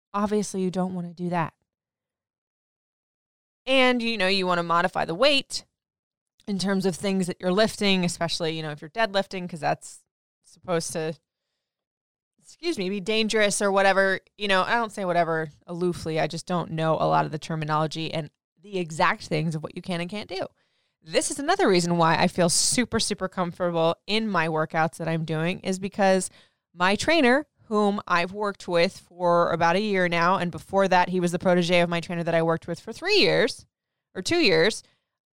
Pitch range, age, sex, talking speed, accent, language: 170-220 Hz, 20-39, female, 195 wpm, American, English